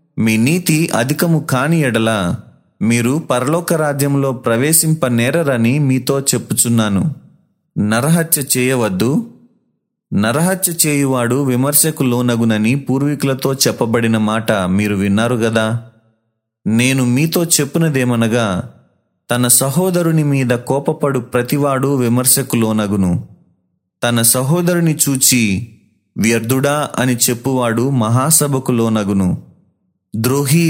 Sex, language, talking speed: male, Telugu, 75 wpm